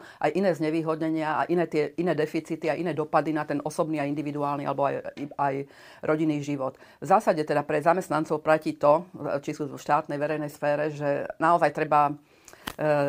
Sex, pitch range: female, 145-160 Hz